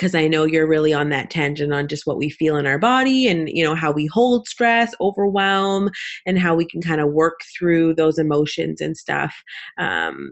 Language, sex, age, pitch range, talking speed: English, female, 20-39, 150-190 Hz, 215 wpm